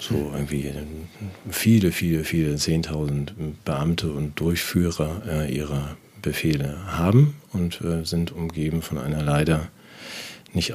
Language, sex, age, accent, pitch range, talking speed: German, male, 40-59, German, 75-90 Hz, 105 wpm